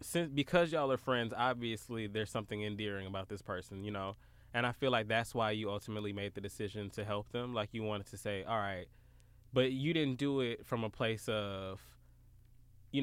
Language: English